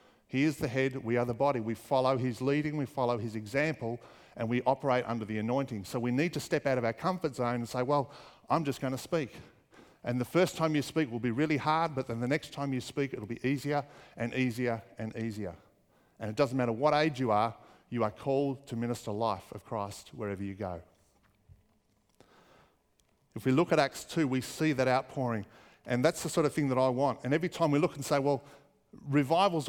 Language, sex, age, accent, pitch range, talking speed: English, male, 50-69, Australian, 120-155 Hz, 225 wpm